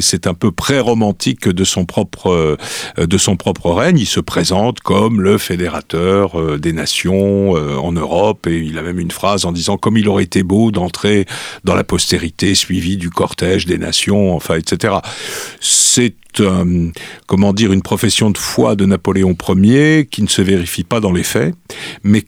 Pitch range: 95-120 Hz